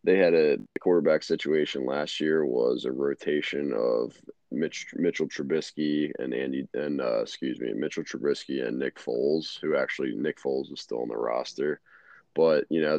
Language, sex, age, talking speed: English, male, 20-39, 170 wpm